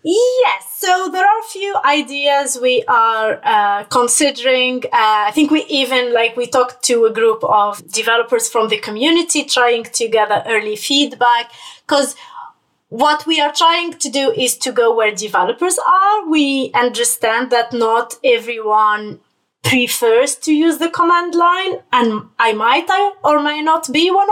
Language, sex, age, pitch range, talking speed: English, female, 30-49, 225-330 Hz, 160 wpm